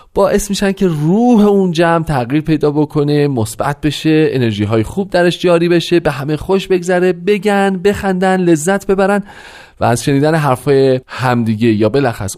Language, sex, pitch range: Persian, male, 115-175 Hz